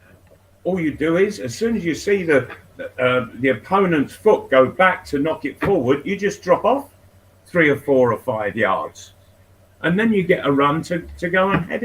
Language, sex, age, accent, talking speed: English, male, 50-69, British, 210 wpm